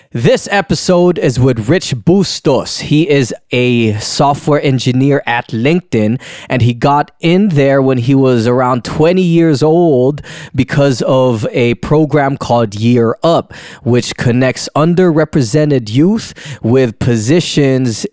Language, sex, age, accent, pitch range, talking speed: English, male, 20-39, American, 120-155 Hz, 125 wpm